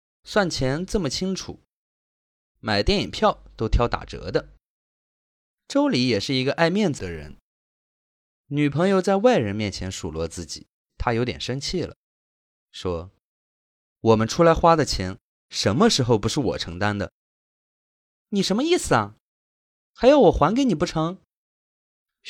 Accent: native